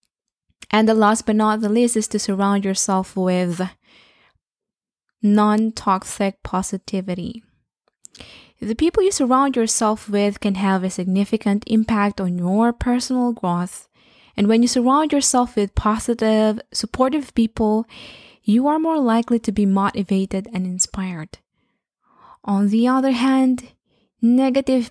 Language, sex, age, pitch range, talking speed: English, female, 20-39, 200-275 Hz, 125 wpm